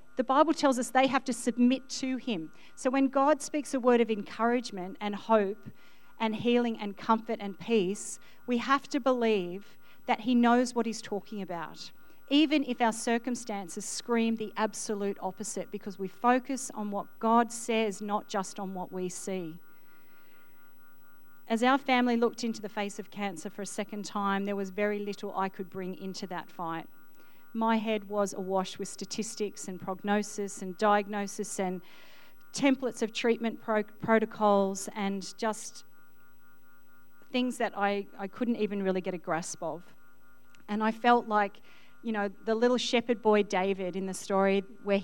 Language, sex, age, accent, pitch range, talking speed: English, female, 40-59, Australian, 200-235 Hz, 165 wpm